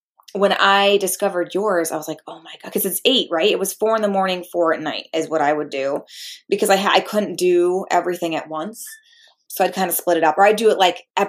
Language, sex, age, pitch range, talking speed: English, female, 20-39, 160-205 Hz, 260 wpm